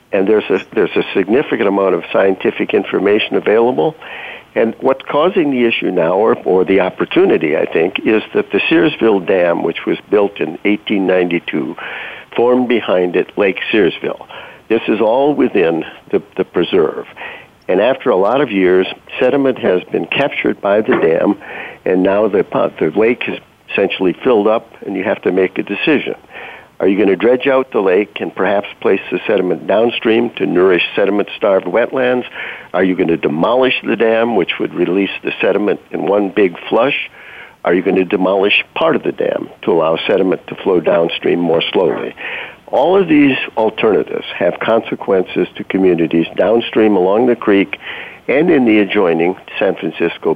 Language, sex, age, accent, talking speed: English, male, 60-79, American, 170 wpm